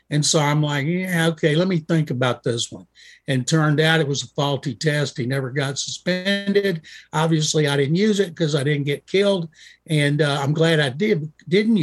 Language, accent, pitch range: English, American, 140-175 Hz